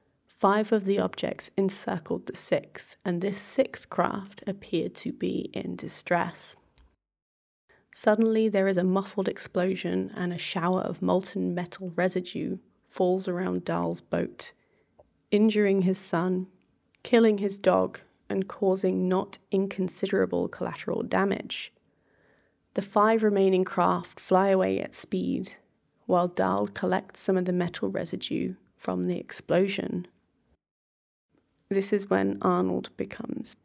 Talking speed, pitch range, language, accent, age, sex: 125 wpm, 180-210 Hz, English, British, 20-39, female